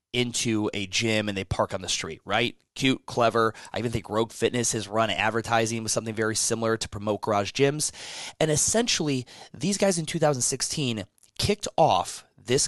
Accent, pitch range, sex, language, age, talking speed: American, 110-155 Hz, male, English, 20-39, 175 wpm